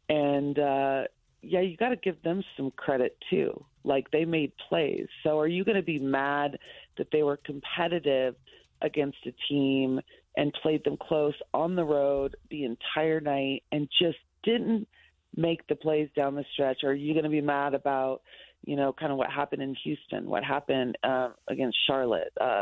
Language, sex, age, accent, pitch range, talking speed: English, female, 30-49, American, 135-155 Hz, 185 wpm